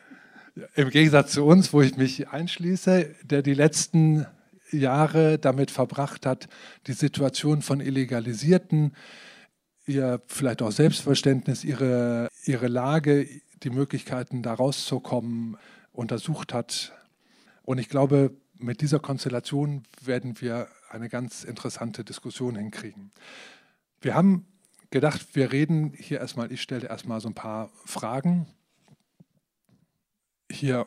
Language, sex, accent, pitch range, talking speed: German, male, German, 120-150 Hz, 115 wpm